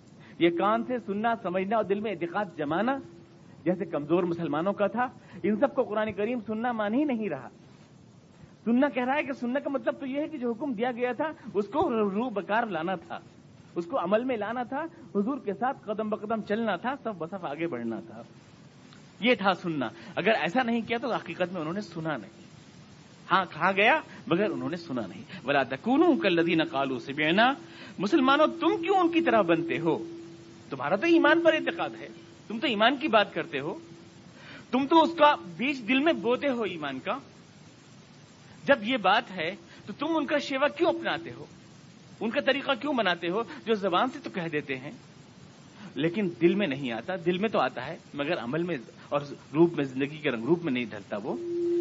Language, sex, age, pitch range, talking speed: Urdu, male, 40-59, 170-270 Hz, 200 wpm